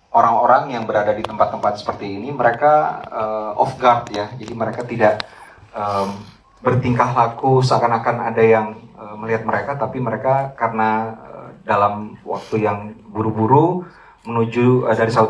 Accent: native